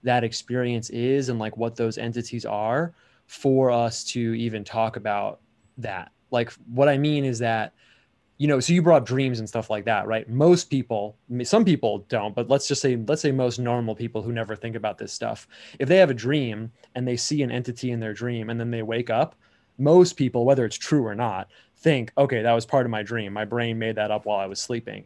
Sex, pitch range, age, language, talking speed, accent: male, 115-135 Hz, 20-39, English, 230 wpm, American